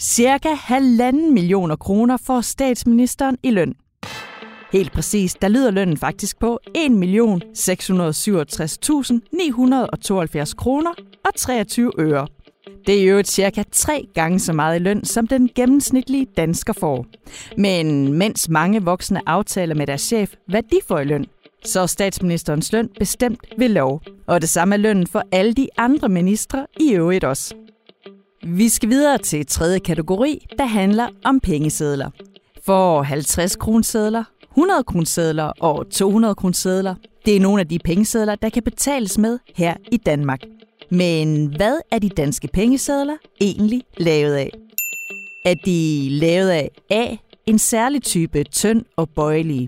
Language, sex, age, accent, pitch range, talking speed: Danish, female, 30-49, native, 170-230 Hz, 145 wpm